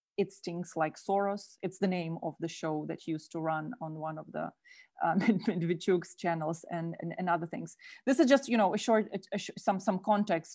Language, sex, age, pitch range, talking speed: English, female, 30-49, 170-210 Hz, 200 wpm